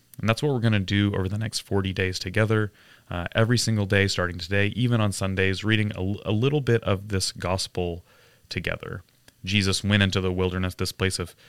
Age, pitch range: 30-49, 90-105 Hz